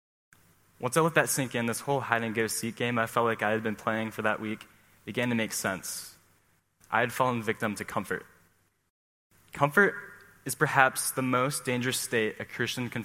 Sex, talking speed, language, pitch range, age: male, 200 wpm, English, 100-130 Hz, 10-29